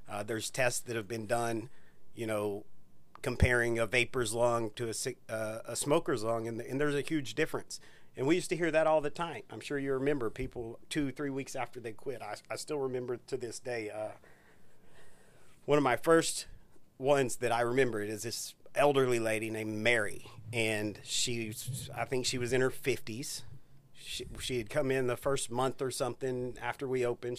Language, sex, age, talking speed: English, male, 40-59, 200 wpm